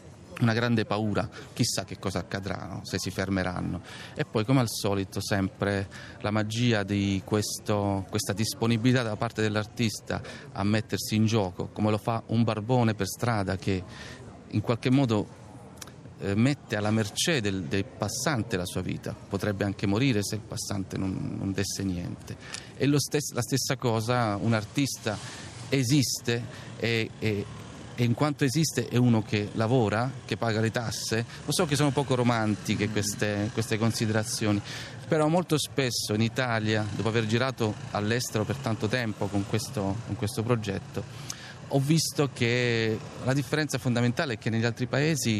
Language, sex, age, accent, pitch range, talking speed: Italian, male, 40-59, native, 105-125 Hz, 160 wpm